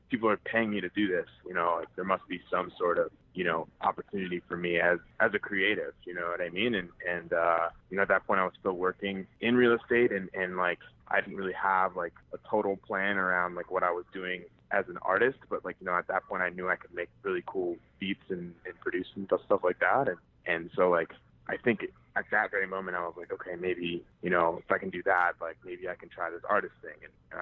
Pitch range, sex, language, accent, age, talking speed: 90-115 Hz, male, English, American, 20-39, 260 wpm